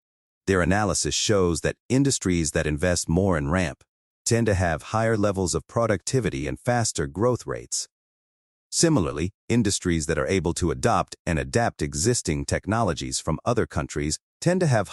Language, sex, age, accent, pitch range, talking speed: English, male, 40-59, American, 80-115 Hz, 155 wpm